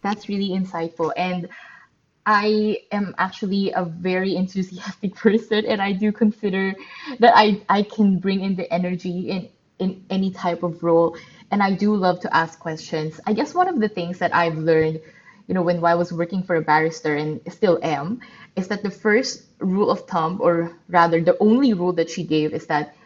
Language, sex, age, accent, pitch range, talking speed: English, female, 20-39, Filipino, 170-200 Hz, 195 wpm